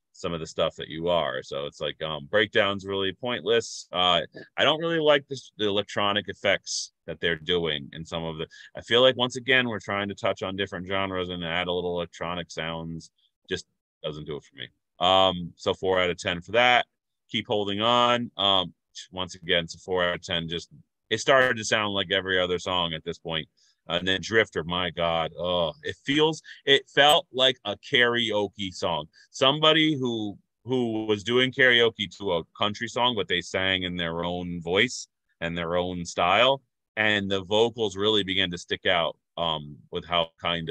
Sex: male